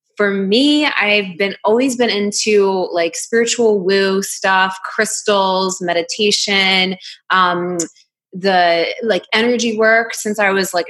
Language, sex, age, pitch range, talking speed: English, female, 20-39, 185-220 Hz, 120 wpm